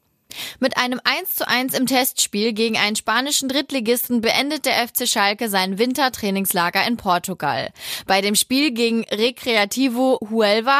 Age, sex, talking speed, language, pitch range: 20-39, female, 130 wpm, German, 200-255 Hz